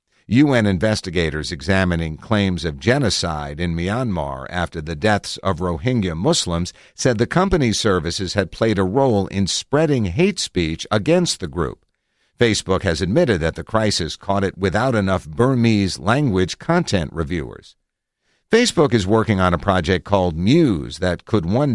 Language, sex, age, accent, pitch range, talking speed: English, male, 50-69, American, 85-120 Hz, 150 wpm